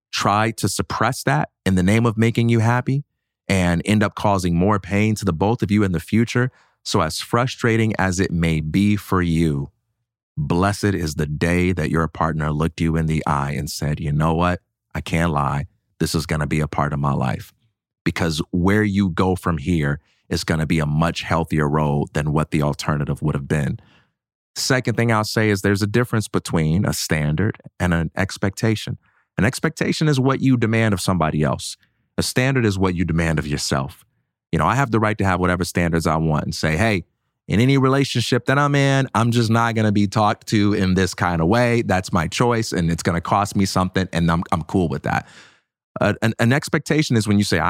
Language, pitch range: English, 85-115 Hz